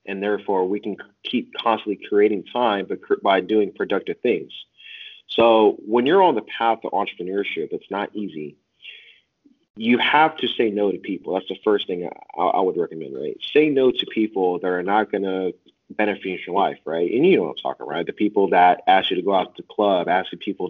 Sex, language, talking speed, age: male, English, 210 wpm, 30-49